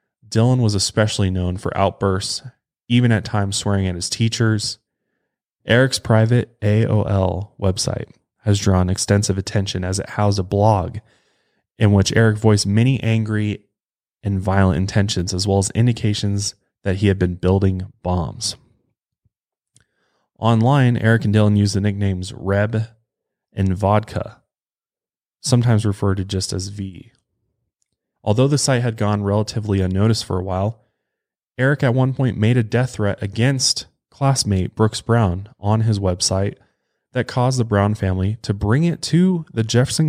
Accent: American